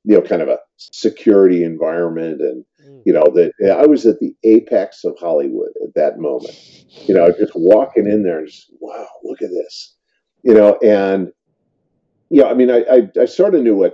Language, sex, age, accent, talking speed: English, male, 50-69, American, 205 wpm